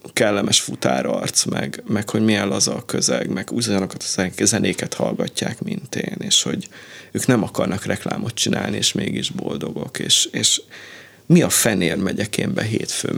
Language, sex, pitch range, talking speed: Hungarian, male, 95-115 Hz, 145 wpm